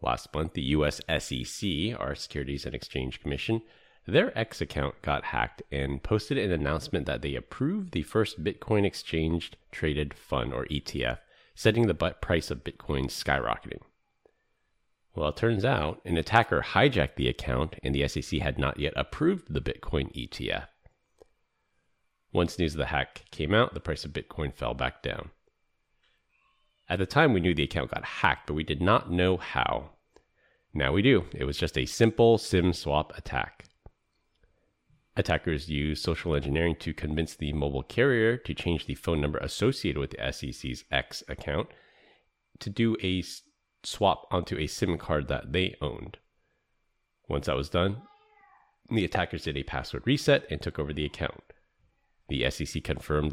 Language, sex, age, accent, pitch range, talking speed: English, male, 30-49, American, 70-105 Hz, 165 wpm